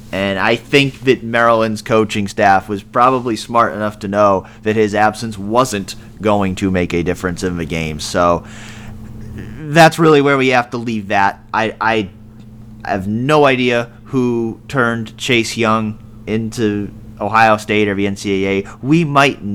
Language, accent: English, American